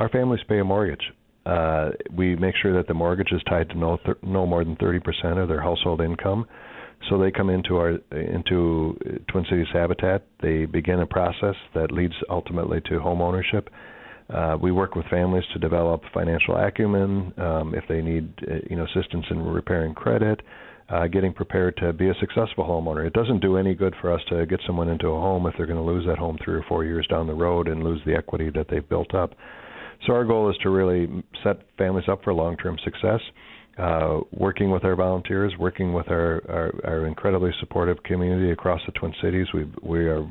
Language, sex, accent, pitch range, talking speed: English, male, American, 85-100 Hz, 205 wpm